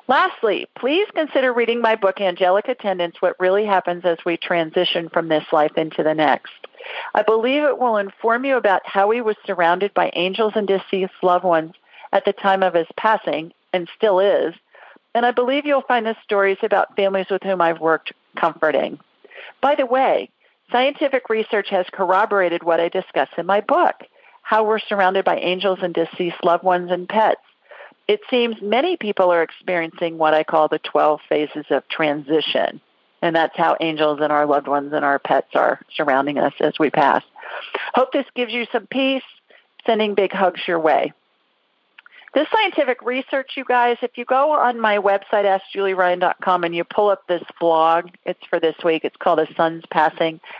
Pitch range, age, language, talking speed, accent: 170-235 Hz, 50-69, English, 180 wpm, American